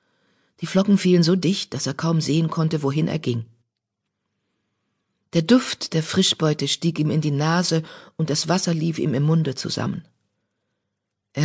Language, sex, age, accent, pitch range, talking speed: German, female, 40-59, German, 135-170 Hz, 160 wpm